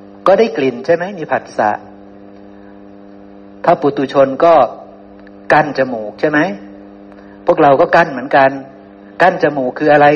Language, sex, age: Thai, male, 60-79